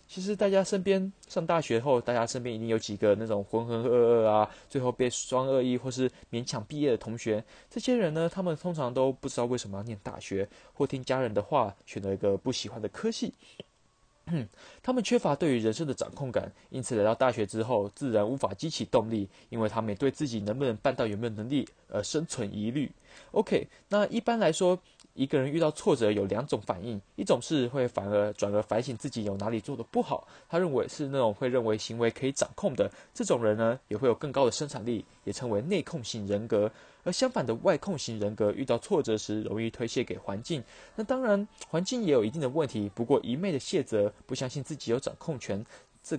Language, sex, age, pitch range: English, male, 20-39, 110-165 Hz